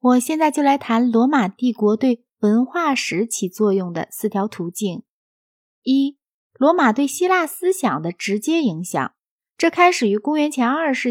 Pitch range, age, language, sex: 215-315 Hz, 20-39, Chinese, female